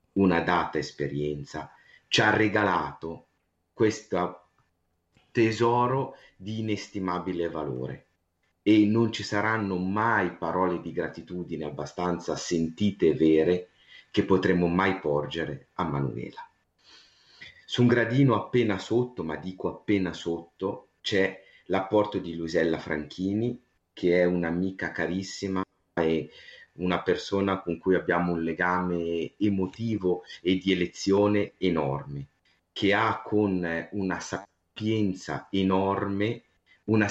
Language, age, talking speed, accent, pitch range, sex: Italian, 30-49, 110 wpm, native, 85-105 Hz, male